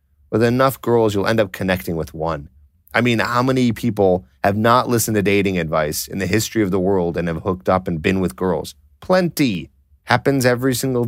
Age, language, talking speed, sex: 30-49, English, 205 wpm, male